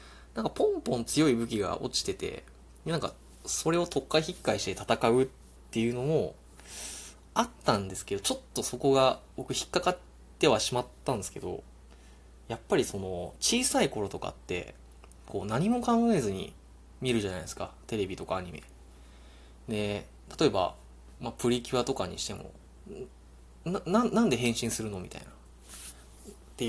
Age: 20-39